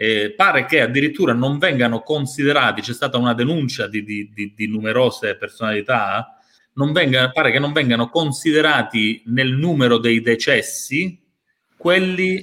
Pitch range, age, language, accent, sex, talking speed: 120-160 Hz, 30-49, Italian, native, male, 140 wpm